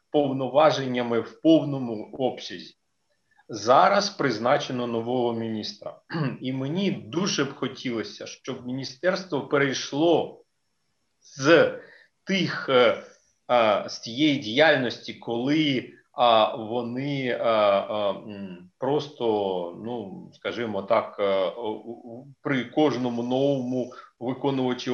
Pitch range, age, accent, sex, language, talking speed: 120-155 Hz, 40-59, native, male, Ukrainian, 75 wpm